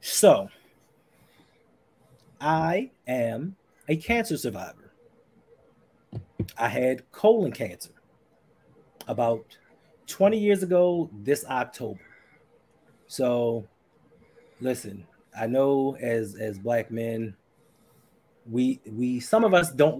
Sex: male